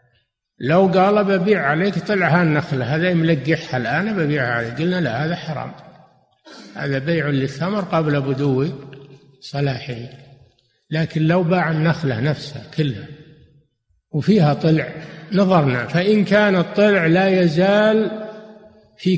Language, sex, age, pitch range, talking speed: Arabic, male, 60-79, 140-175 Hz, 115 wpm